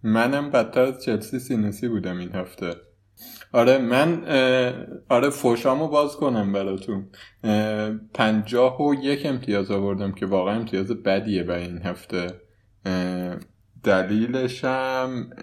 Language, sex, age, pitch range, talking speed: Persian, male, 20-39, 100-125 Hz, 120 wpm